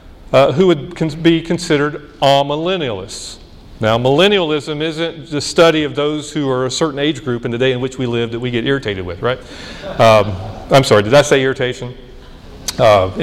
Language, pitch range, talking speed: English, 130-165 Hz, 180 wpm